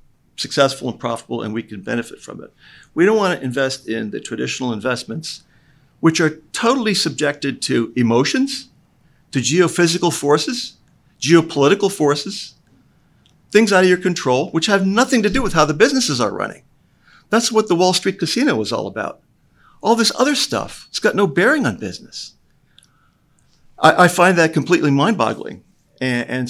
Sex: male